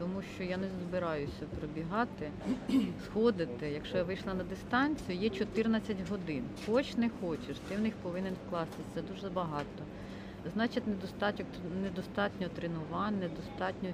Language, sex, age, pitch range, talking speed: Ukrainian, female, 40-59, 165-205 Hz, 130 wpm